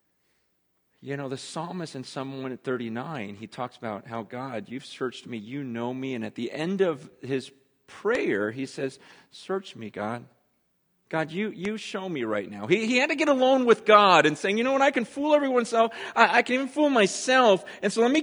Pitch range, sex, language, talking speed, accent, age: 155-225 Hz, male, English, 215 wpm, American, 40-59